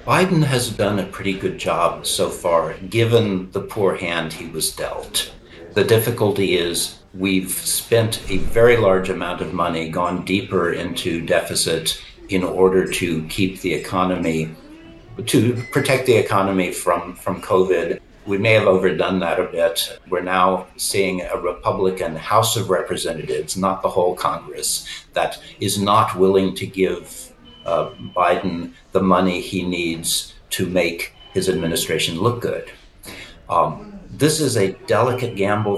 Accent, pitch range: American, 90-115 Hz